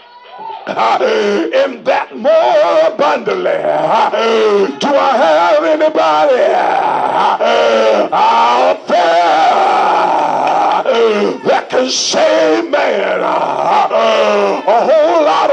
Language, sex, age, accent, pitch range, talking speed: English, male, 60-79, American, 265-385 Hz, 65 wpm